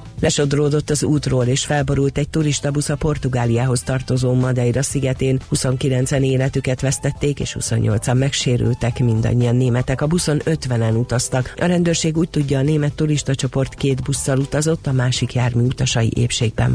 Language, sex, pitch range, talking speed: Hungarian, female, 120-145 Hz, 145 wpm